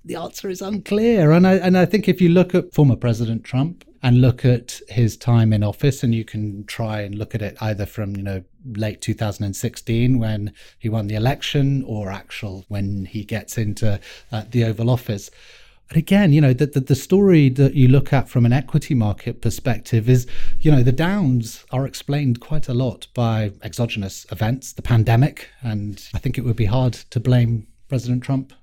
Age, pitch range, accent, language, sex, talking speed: 30-49, 105-135 Hz, British, English, male, 195 wpm